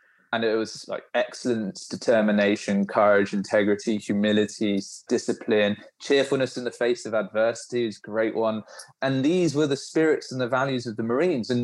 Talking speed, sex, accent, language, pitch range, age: 160 wpm, male, British, English, 110-145 Hz, 20-39